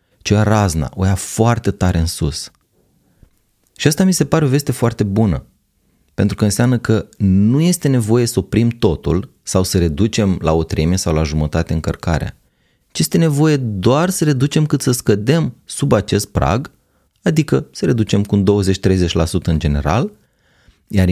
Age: 30-49